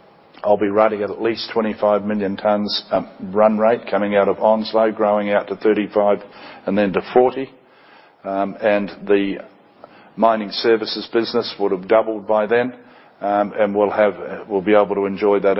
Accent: Australian